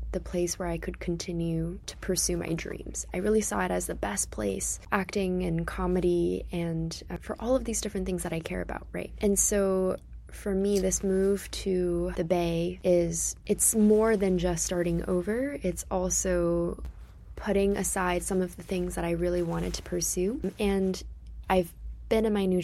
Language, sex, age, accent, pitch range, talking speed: English, female, 20-39, American, 170-195 Hz, 185 wpm